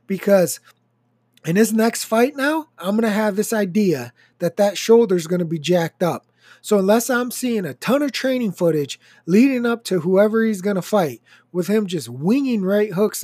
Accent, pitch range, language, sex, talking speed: American, 175-225 Hz, English, male, 200 wpm